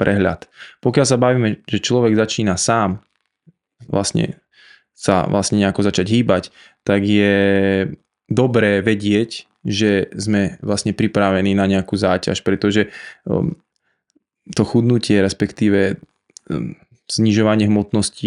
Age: 20-39